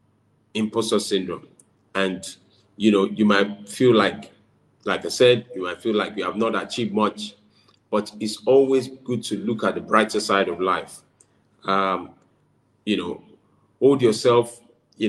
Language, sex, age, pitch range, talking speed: English, male, 40-59, 105-120 Hz, 155 wpm